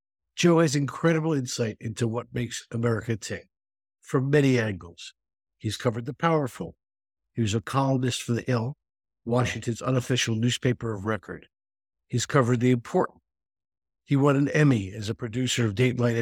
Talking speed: 150 wpm